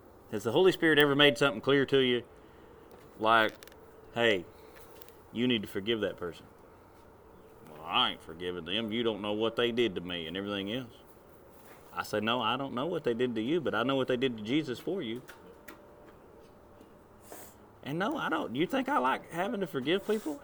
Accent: American